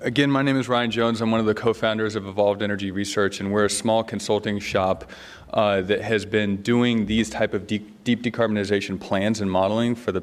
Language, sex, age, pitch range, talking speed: English, male, 30-49, 95-115 Hz, 215 wpm